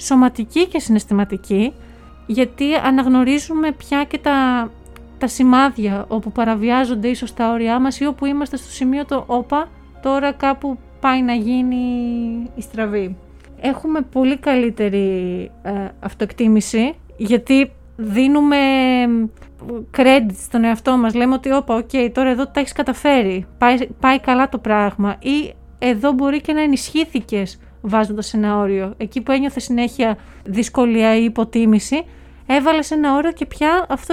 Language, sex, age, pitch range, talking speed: Greek, female, 30-49, 220-280 Hz, 140 wpm